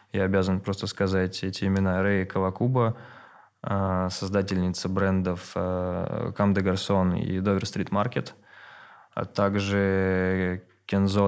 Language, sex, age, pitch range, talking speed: Russian, male, 20-39, 95-100 Hz, 100 wpm